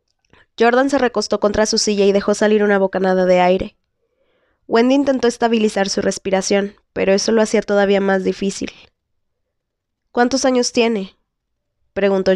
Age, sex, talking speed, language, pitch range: 20-39, female, 140 wpm, Spanish, 195-230 Hz